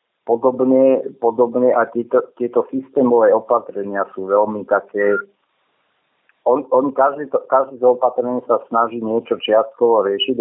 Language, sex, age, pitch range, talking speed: Slovak, male, 50-69, 105-125 Hz, 110 wpm